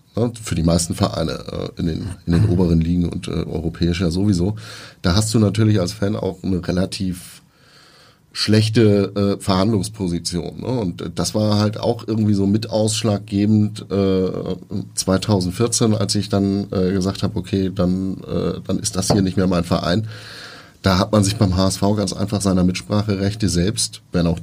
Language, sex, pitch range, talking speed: German, male, 95-110 Hz, 170 wpm